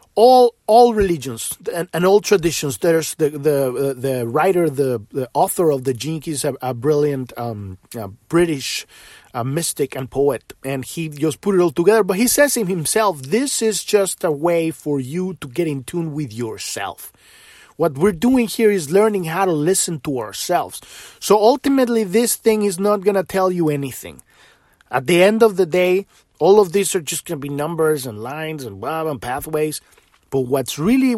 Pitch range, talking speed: 135-185 Hz, 190 wpm